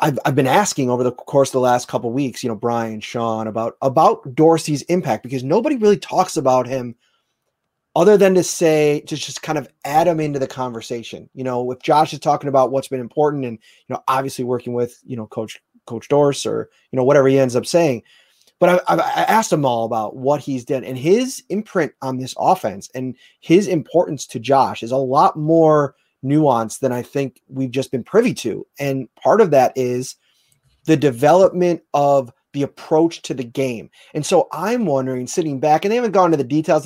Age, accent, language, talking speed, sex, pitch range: 30-49, American, English, 210 wpm, male, 125-160 Hz